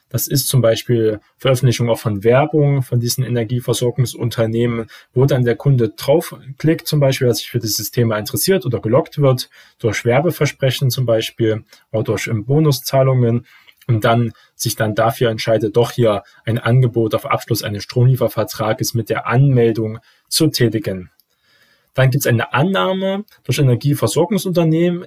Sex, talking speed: male, 145 wpm